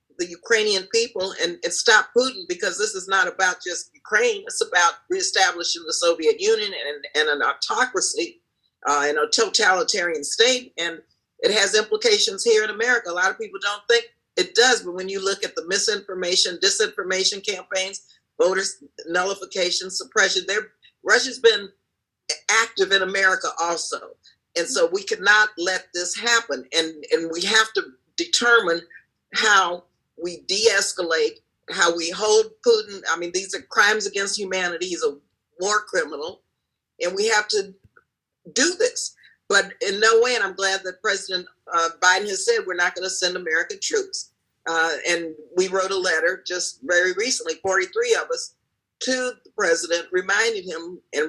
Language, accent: English, American